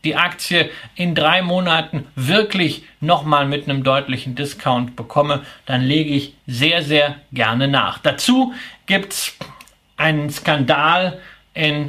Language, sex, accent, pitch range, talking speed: German, male, German, 145-180 Hz, 125 wpm